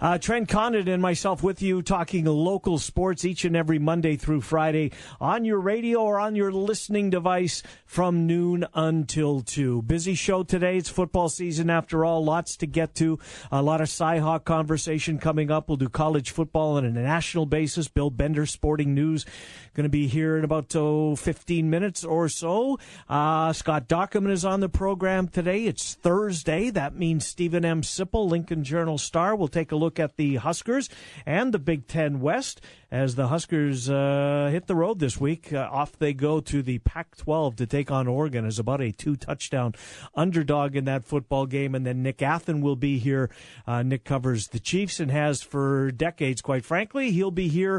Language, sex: English, male